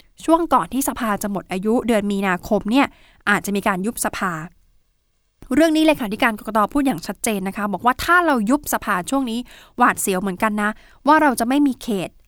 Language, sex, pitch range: Thai, female, 200-255 Hz